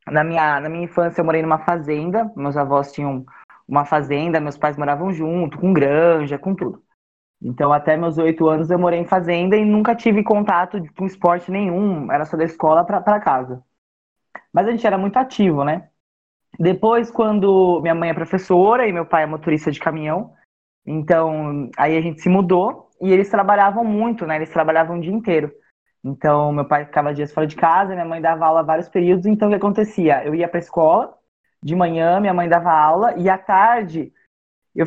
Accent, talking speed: Brazilian, 195 wpm